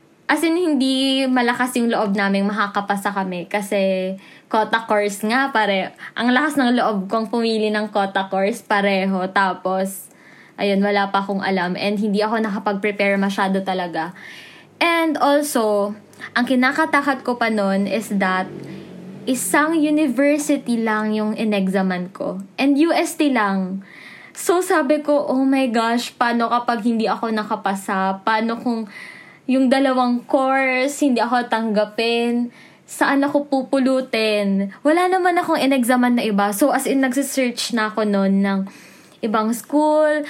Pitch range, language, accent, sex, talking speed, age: 200-260 Hz, Filipino, native, female, 135 wpm, 20-39